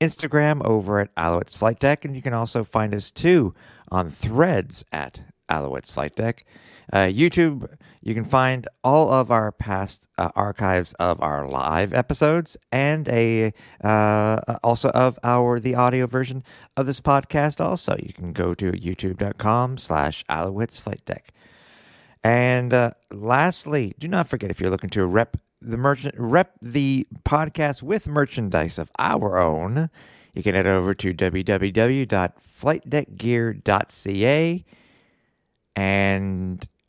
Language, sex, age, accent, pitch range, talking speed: English, male, 50-69, American, 95-145 Hz, 135 wpm